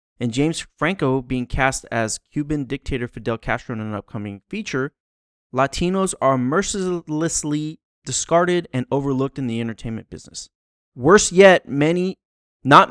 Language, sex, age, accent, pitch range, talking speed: English, male, 30-49, American, 110-150 Hz, 130 wpm